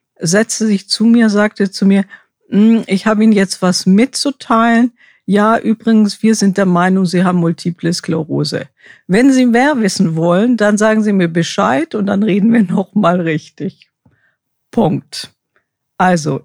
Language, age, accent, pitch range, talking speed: German, 50-69, German, 175-215 Hz, 150 wpm